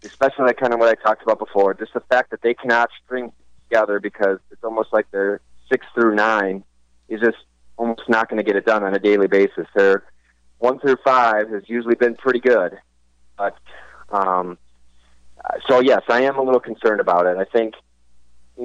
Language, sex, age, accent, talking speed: English, male, 30-49, American, 195 wpm